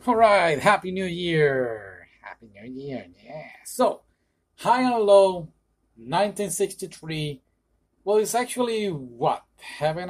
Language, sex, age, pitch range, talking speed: English, male, 30-49, 120-195 Hz, 115 wpm